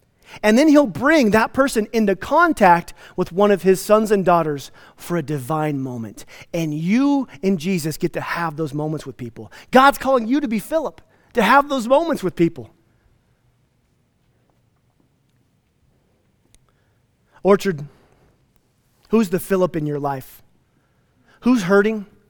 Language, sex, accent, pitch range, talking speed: English, male, American, 160-230 Hz, 135 wpm